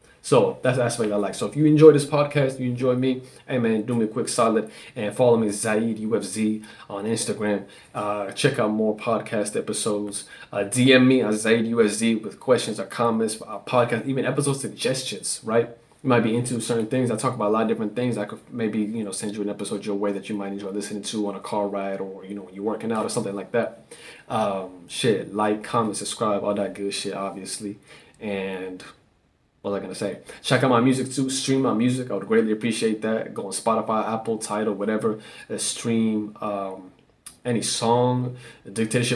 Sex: male